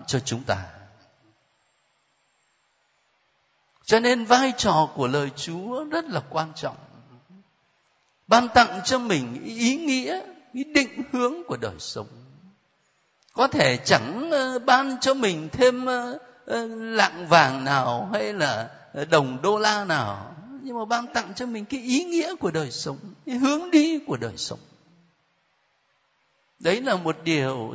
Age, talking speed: 50-69, 135 wpm